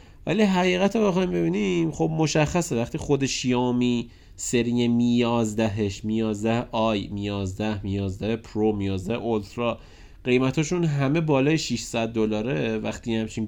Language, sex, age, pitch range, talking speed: Persian, male, 30-49, 105-140 Hz, 125 wpm